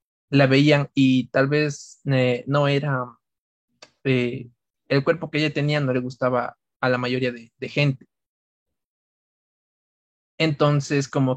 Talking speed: 130 wpm